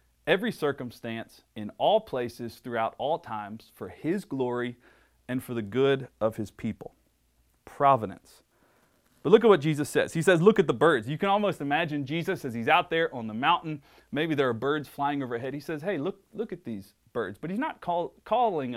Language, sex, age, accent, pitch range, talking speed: English, male, 30-49, American, 120-175 Hz, 200 wpm